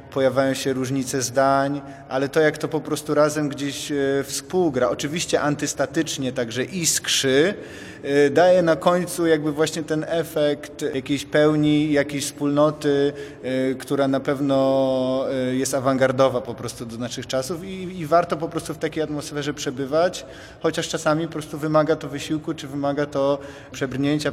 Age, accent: 30-49, native